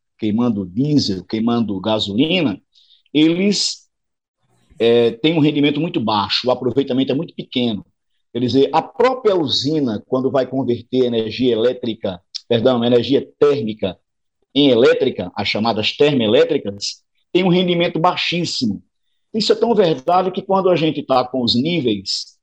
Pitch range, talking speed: 120-165 Hz, 135 wpm